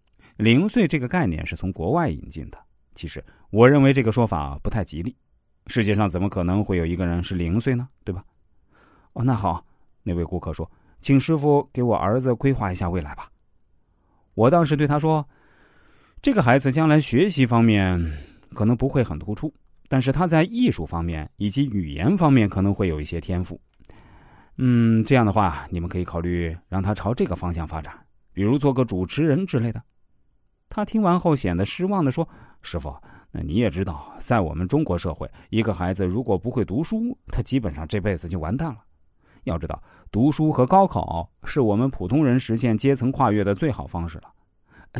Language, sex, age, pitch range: Chinese, male, 30-49, 90-140 Hz